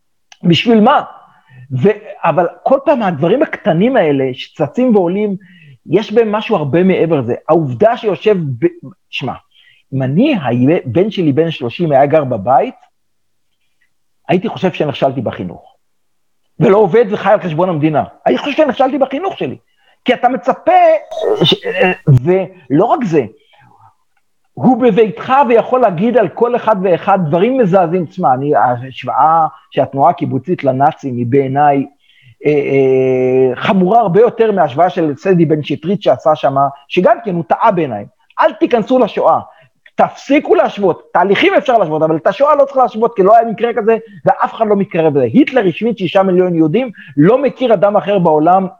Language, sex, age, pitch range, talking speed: Hebrew, male, 50-69, 155-235 Hz, 145 wpm